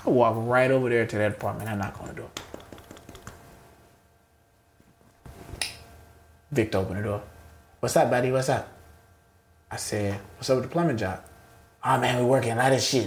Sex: male